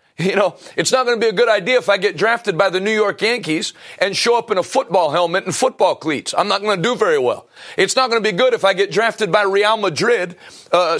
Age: 40-59